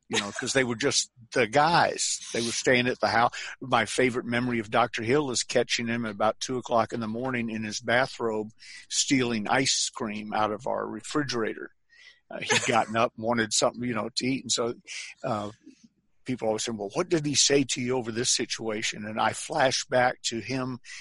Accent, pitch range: American, 110-130 Hz